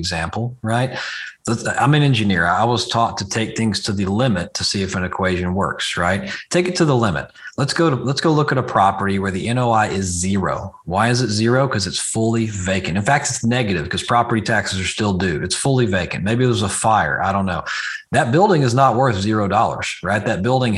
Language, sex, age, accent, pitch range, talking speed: English, male, 40-59, American, 95-115 Hz, 225 wpm